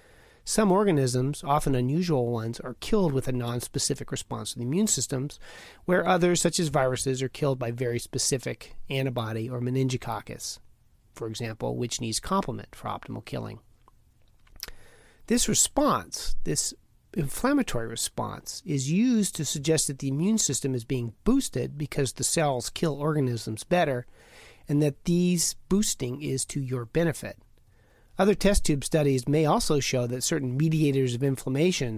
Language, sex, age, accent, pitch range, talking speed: English, male, 40-59, American, 125-165 Hz, 145 wpm